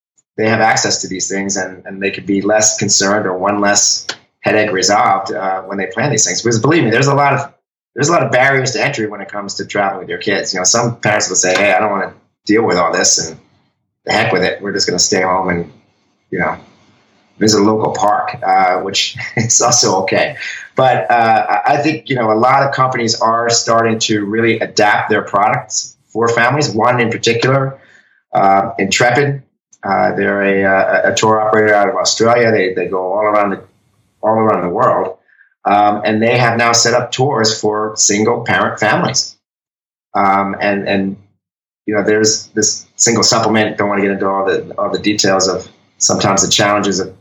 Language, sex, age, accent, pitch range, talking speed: English, male, 30-49, American, 100-115 Hz, 210 wpm